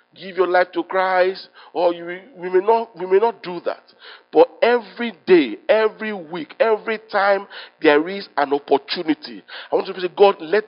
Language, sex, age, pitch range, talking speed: English, male, 50-69, 135-220 Hz, 185 wpm